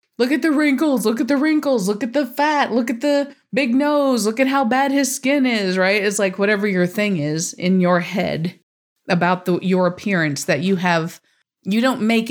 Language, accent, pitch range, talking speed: English, American, 175-225 Hz, 210 wpm